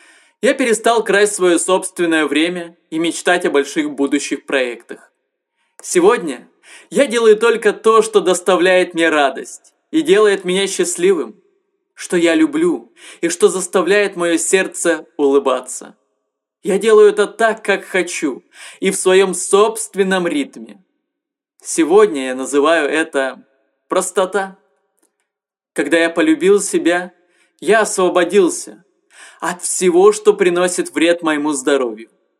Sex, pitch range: male, 160-255 Hz